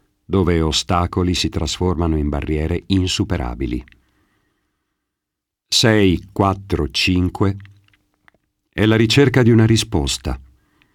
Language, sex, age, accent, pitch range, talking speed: Italian, male, 50-69, native, 75-100 Hz, 90 wpm